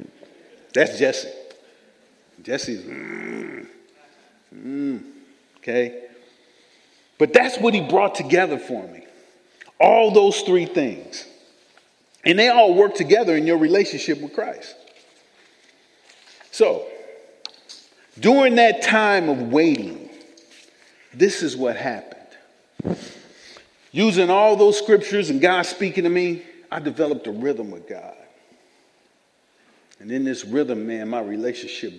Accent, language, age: American, English, 40-59